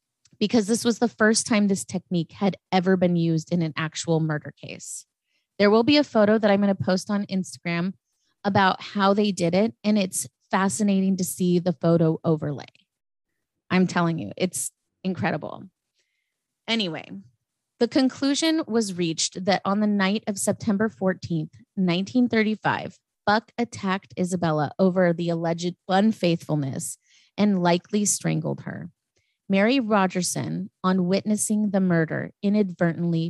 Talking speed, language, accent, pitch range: 140 wpm, English, American, 165-205 Hz